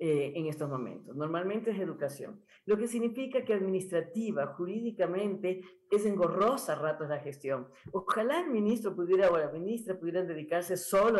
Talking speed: 150 wpm